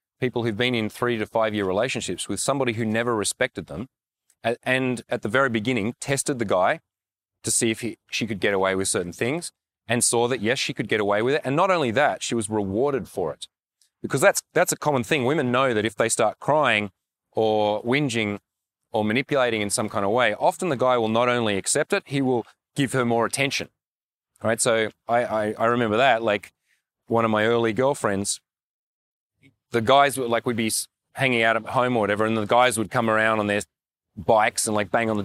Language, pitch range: English, 105-130 Hz